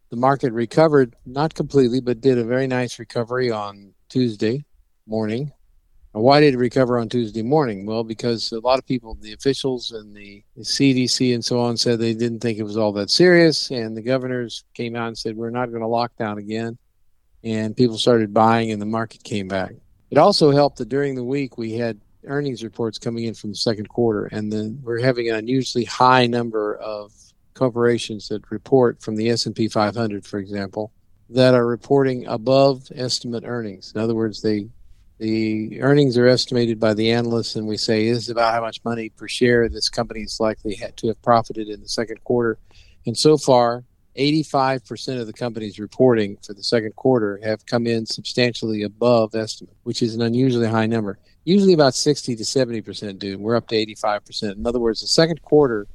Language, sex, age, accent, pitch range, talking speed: English, male, 50-69, American, 110-125 Hz, 195 wpm